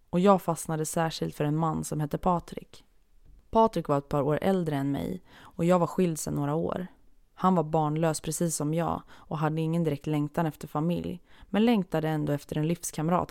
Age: 20-39